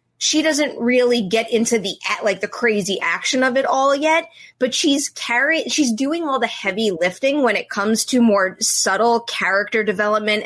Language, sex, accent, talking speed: English, female, American, 180 wpm